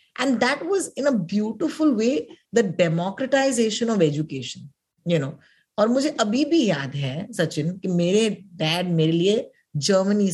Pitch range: 165-245 Hz